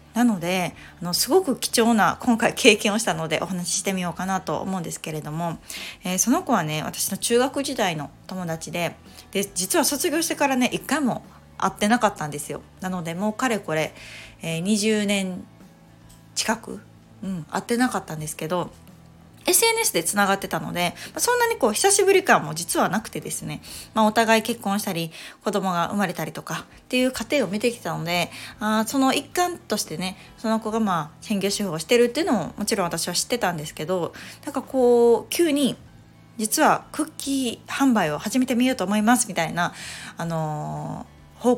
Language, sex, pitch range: Japanese, female, 170-245 Hz